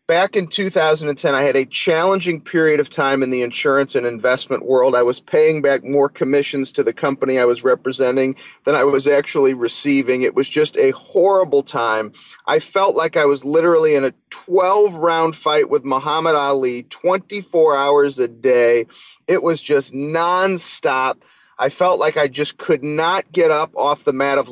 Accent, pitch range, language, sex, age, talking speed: American, 140-195 Hz, English, male, 30-49, 180 wpm